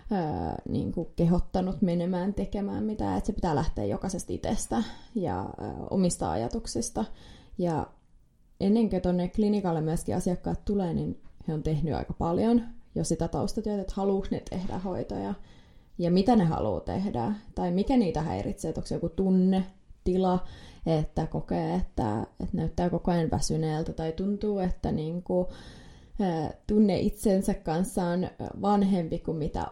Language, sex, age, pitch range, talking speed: Finnish, female, 20-39, 170-190 Hz, 140 wpm